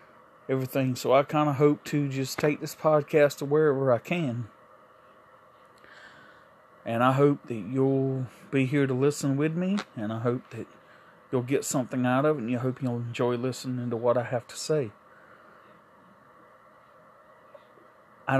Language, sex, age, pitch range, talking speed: English, male, 40-59, 125-145 Hz, 155 wpm